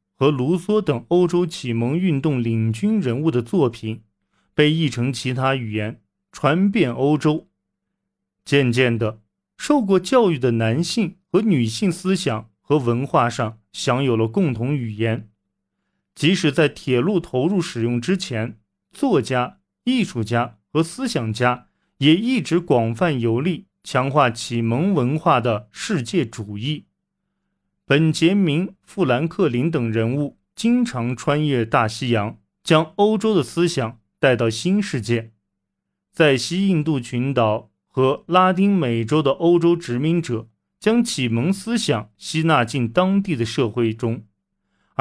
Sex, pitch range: male, 115-175 Hz